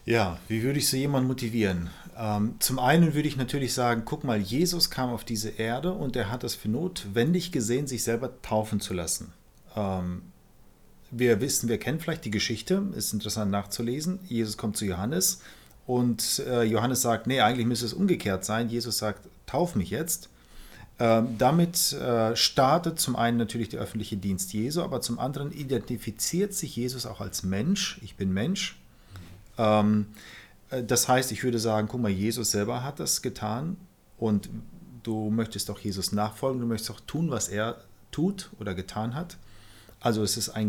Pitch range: 105-135 Hz